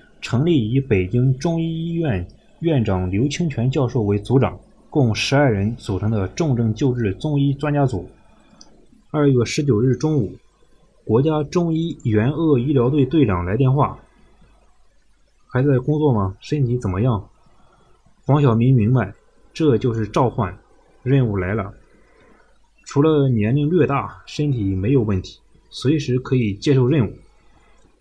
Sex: male